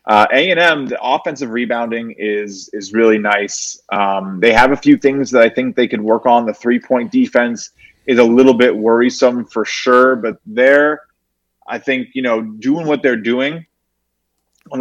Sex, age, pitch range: male, 20-39, 110-135 Hz